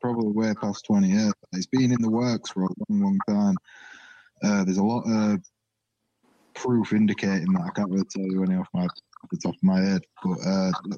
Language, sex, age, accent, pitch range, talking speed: English, male, 20-39, British, 115-185 Hz, 215 wpm